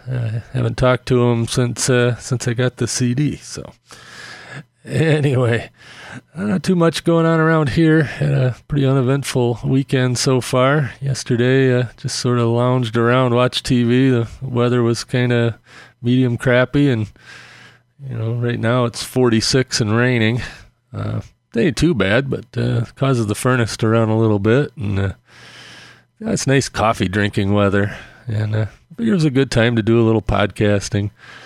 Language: English